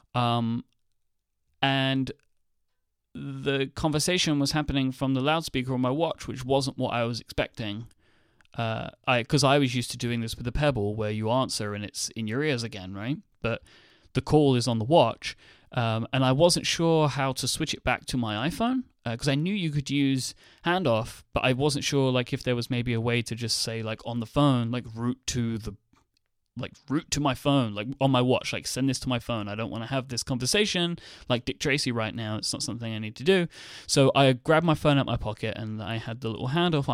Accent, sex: British, male